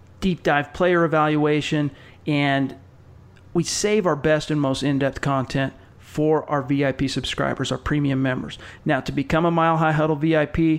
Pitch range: 135-165 Hz